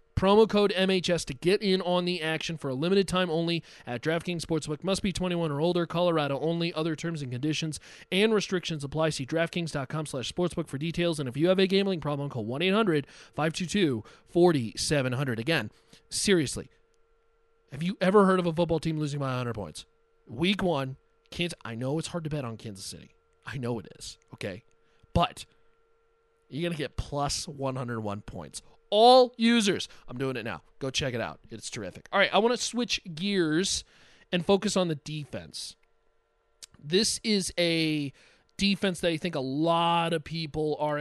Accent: American